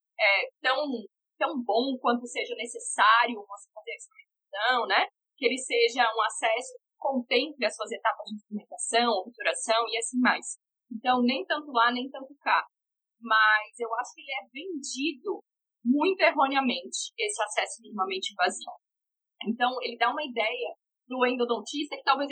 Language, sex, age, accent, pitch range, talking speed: Portuguese, female, 10-29, Brazilian, 235-290 Hz, 150 wpm